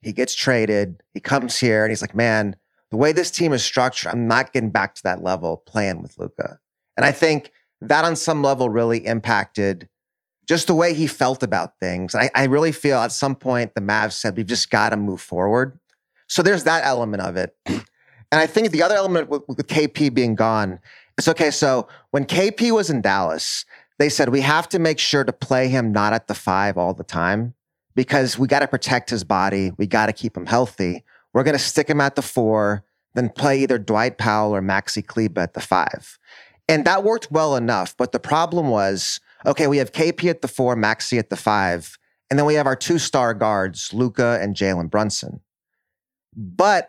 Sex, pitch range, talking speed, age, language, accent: male, 105-145 Hz, 210 wpm, 30-49, English, American